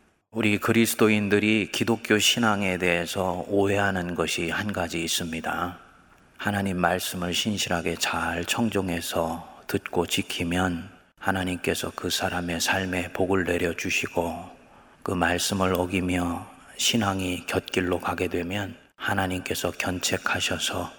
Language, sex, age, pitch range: Korean, male, 30-49, 90-105 Hz